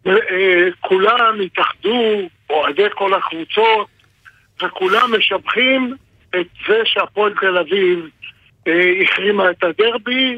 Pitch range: 190-245 Hz